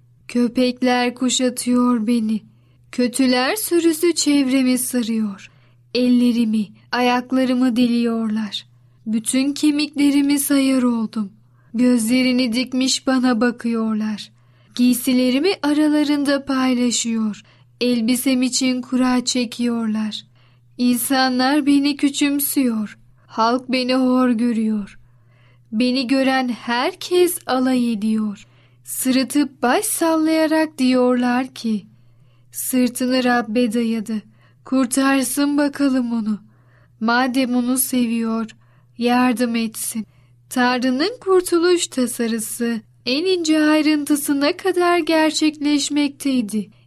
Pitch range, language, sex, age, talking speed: 220-270 Hz, Turkish, female, 10-29, 80 wpm